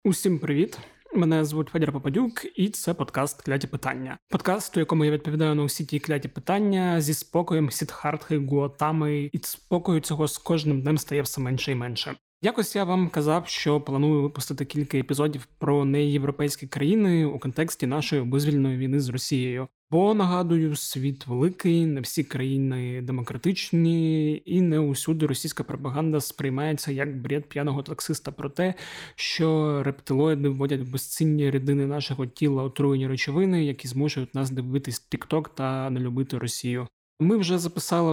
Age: 20-39